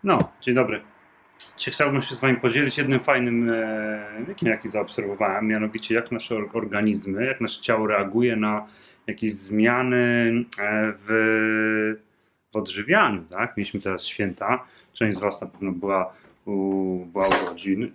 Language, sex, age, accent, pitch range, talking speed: Polish, male, 30-49, native, 95-115 Hz, 145 wpm